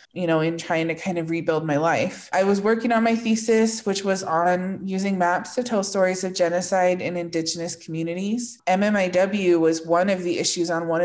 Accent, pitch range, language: American, 170-200 Hz, English